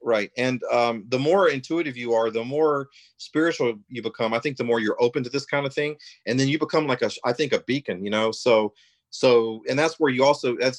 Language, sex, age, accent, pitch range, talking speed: English, male, 40-59, American, 110-135 Hz, 245 wpm